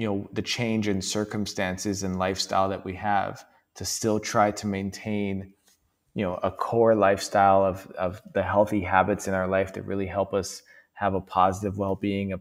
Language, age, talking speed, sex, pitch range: English, 20-39, 185 wpm, male, 105-125 Hz